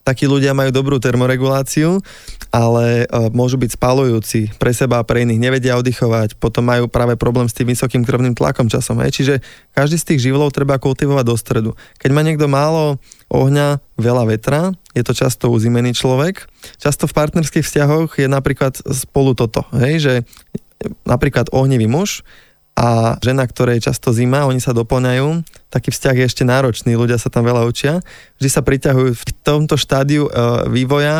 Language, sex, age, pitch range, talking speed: Slovak, male, 20-39, 120-140 Hz, 165 wpm